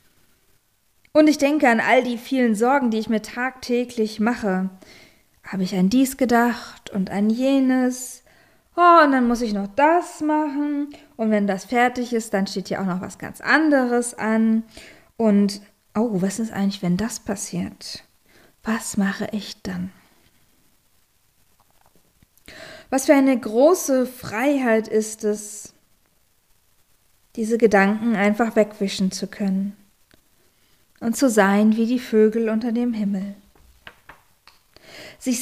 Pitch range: 200-250 Hz